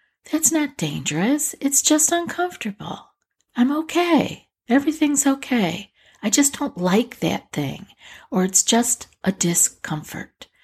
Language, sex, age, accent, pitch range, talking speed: English, female, 50-69, American, 165-230 Hz, 120 wpm